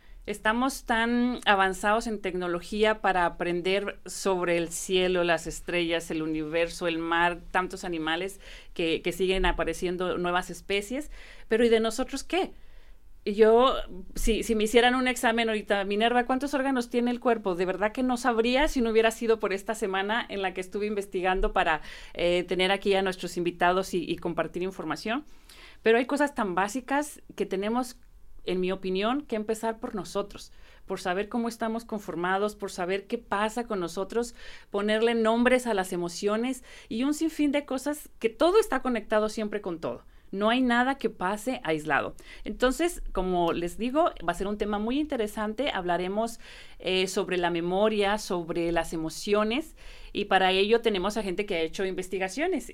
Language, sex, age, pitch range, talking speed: English, female, 40-59, 185-235 Hz, 170 wpm